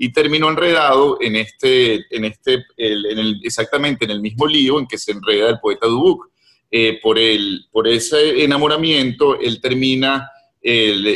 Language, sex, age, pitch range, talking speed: Spanish, male, 40-59, 110-140 Hz, 160 wpm